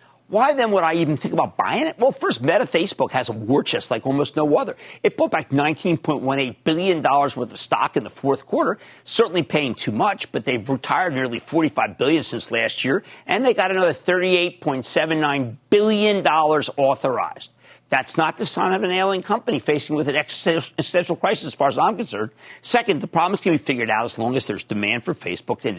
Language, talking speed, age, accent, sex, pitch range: English, 225 wpm, 50-69, American, male, 130-185 Hz